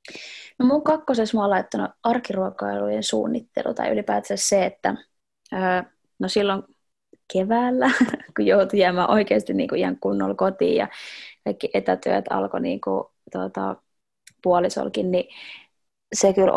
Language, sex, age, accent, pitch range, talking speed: Finnish, female, 20-39, native, 180-230 Hz, 120 wpm